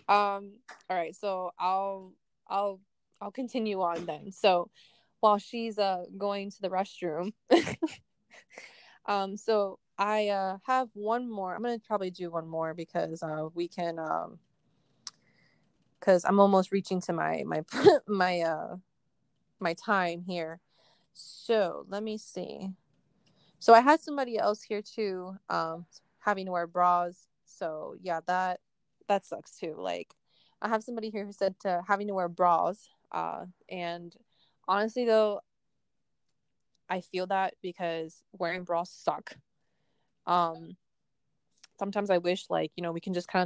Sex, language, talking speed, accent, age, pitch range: female, English, 145 wpm, American, 20-39, 175-220 Hz